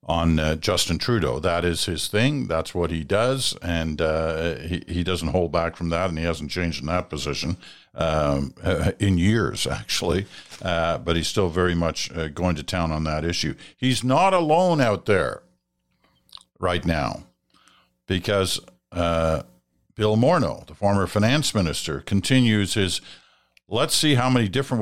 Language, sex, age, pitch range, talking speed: English, male, 50-69, 80-100 Hz, 160 wpm